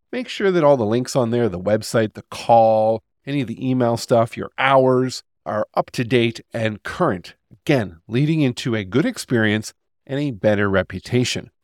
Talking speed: 180 wpm